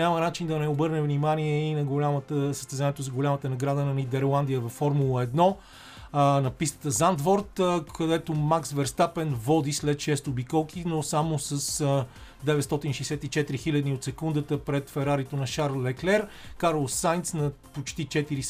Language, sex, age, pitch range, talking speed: Bulgarian, male, 30-49, 135-155 Hz, 150 wpm